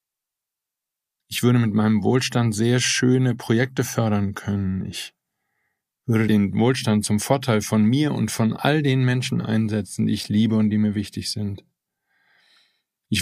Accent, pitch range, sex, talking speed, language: German, 105-125 Hz, male, 150 wpm, German